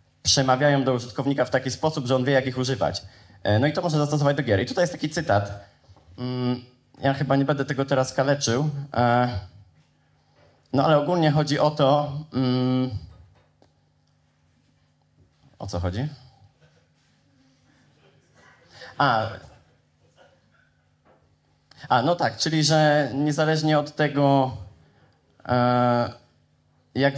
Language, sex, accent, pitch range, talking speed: Polish, male, native, 115-145 Hz, 110 wpm